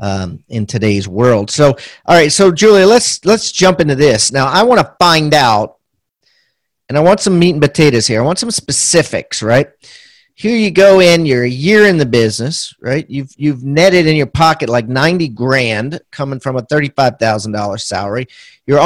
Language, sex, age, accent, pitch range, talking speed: English, male, 40-59, American, 140-185 Hz, 190 wpm